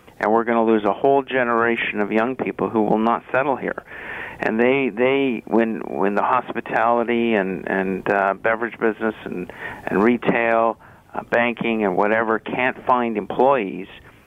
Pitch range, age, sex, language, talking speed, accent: 110-125 Hz, 50-69, male, English, 160 wpm, American